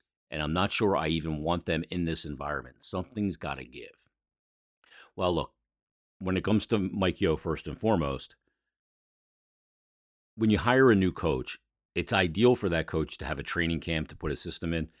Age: 50-69